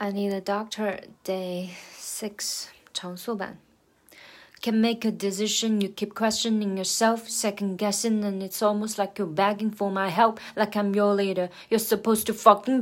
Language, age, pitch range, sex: Chinese, 20-39, 200-230 Hz, female